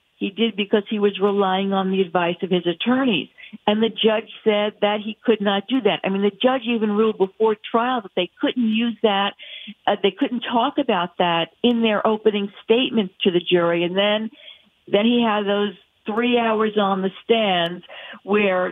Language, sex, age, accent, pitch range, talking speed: English, female, 50-69, American, 190-230 Hz, 190 wpm